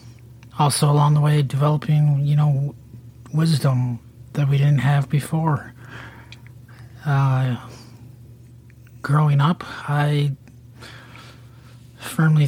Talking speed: 85 wpm